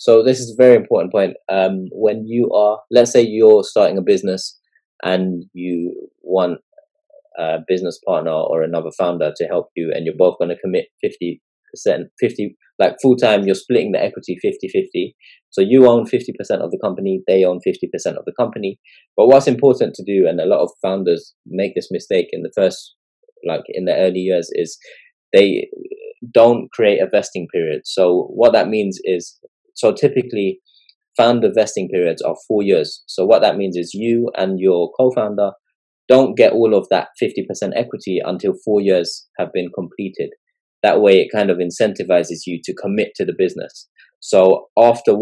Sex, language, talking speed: male, English, 185 wpm